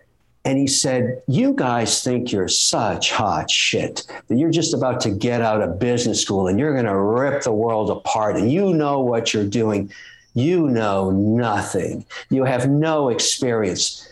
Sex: male